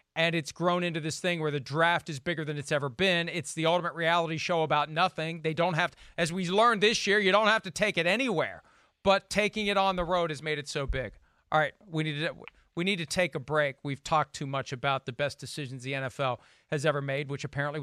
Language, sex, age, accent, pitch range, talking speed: English, male, 40-59, American, 140-195 Hz, 245 wpm